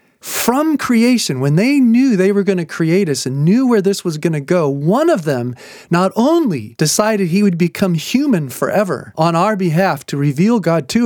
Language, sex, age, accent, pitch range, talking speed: English, male, 40-59, American, 165-235 Hz, 200 wpm